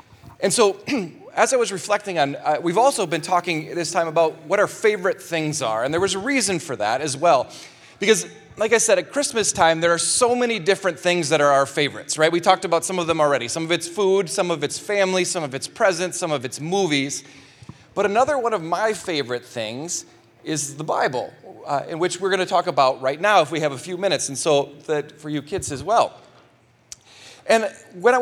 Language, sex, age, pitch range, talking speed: English, male, 30-49, 145-195 Hz, 230 wpm